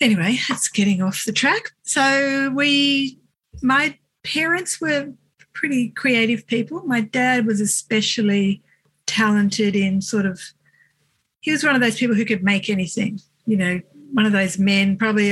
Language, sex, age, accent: English, female, 50-69, Australian